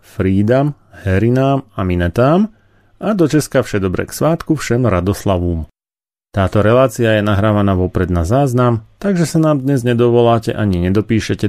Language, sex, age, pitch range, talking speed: Slovak, male, 30-49, 100-125 Hz, 135 wpm